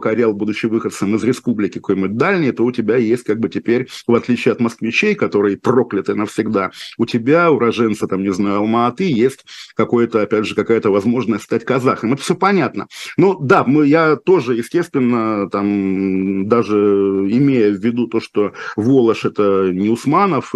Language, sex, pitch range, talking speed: Russian, male, 105-130 Hz, 165 wpm